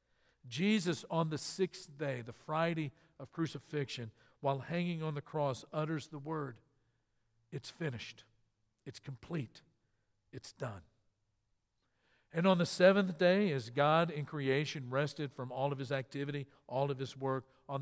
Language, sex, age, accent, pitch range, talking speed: English, male, 50-69, American, 125-160 Hz, 145 wpm